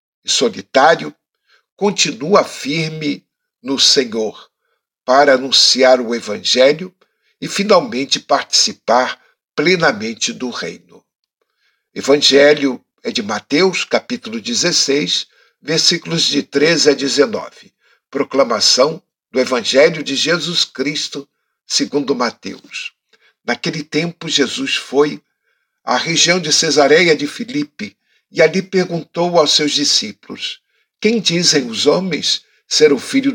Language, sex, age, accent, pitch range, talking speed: Portuguese, male, 60-79, Brazilian, 140-220 Hz, 105 wpm